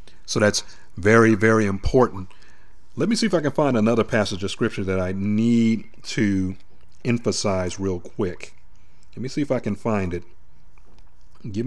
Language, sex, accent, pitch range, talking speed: English, male, American, 95-125 Hz, 165 wpm